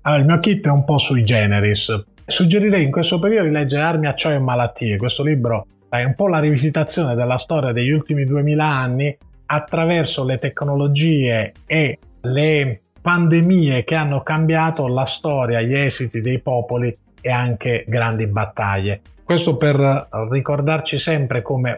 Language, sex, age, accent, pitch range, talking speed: Italian, male, 30-49, native, 120-155 Hz, 155 wpm